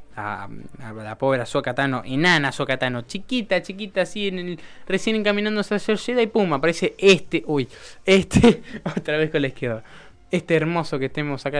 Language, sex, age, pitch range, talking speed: Spanish, male, 10-29, 125-170 Hz, 165 wpm